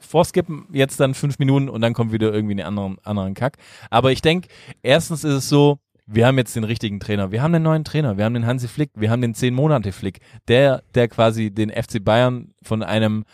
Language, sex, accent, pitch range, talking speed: German, male, German, 105-130 Hz, 230 wpm